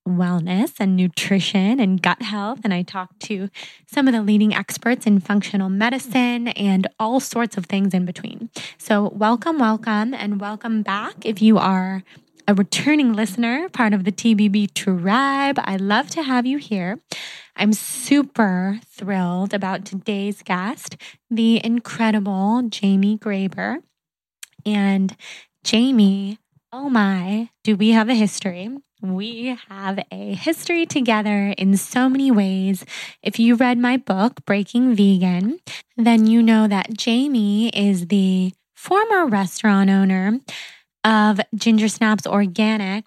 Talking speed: 135 wpm